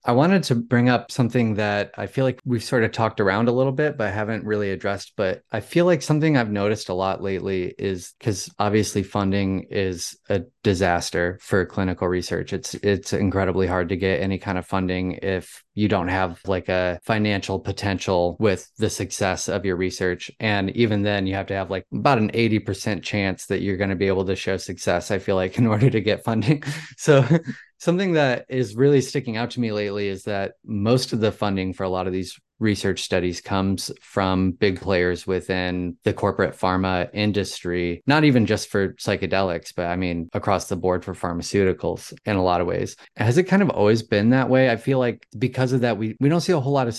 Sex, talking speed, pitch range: male, 215 wpm, 95-115 Hz